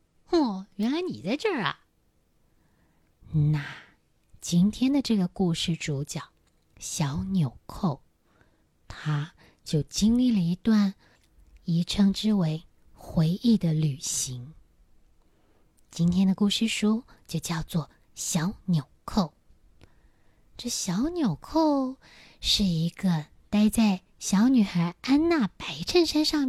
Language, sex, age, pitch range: Chinese, female, 20-39, 160-240 Hz